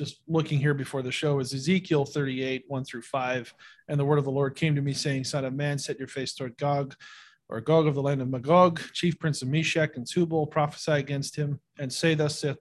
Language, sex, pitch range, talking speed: English, male, 135-165 Hz, 240 wpm